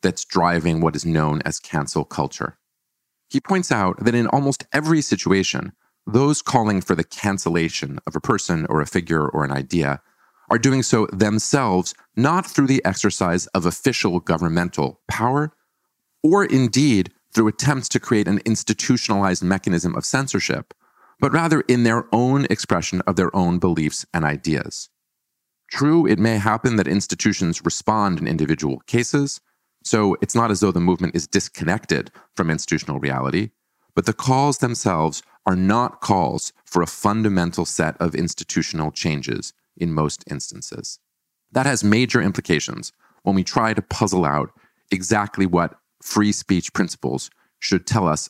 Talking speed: 150 wpm